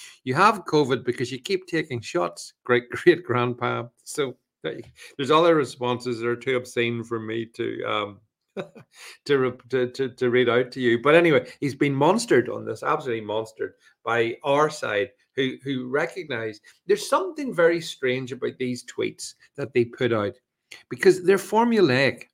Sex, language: male, English